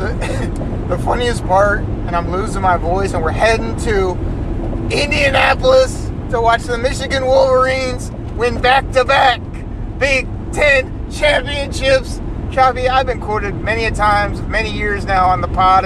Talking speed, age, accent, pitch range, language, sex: 145 wpm, 30-49, American, 180-255 Hz, English, male